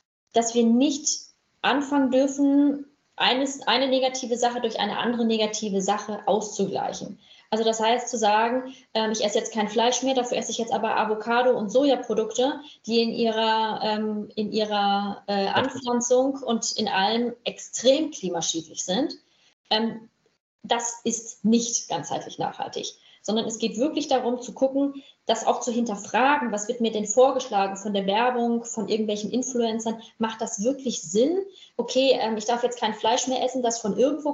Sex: female